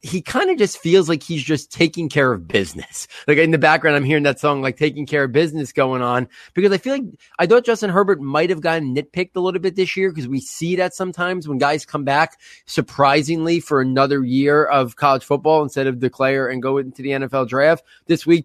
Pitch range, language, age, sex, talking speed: 140-165 Hz, English, 30-49, male, 230 wpm